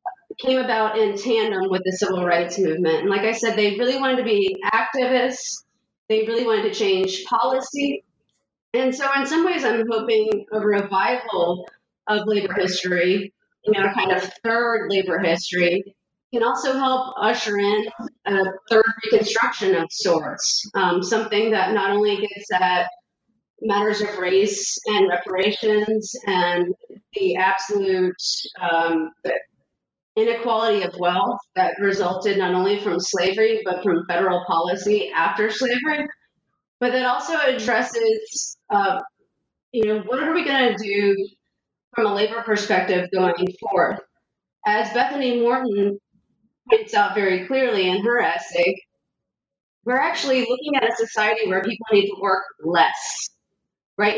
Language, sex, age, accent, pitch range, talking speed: English, female, 30-49, American, 190-250 Hz, 140 wpm